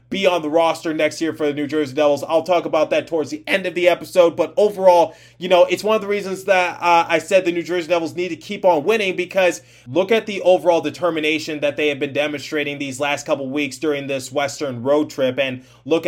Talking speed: 245 wpm